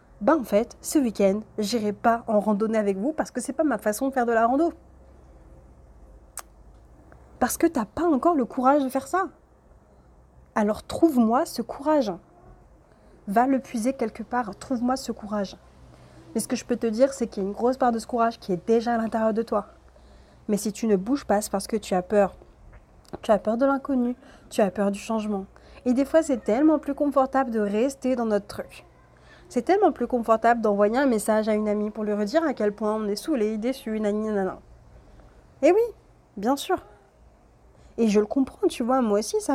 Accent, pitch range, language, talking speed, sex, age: French, 205-255 Hz, French, 210 wpm, female, 30-49